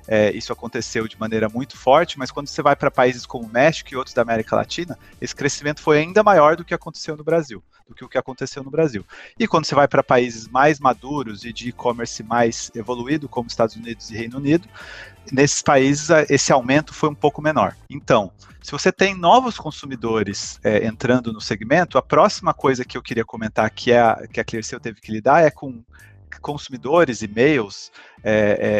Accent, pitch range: Brazilian, 110-150 Hz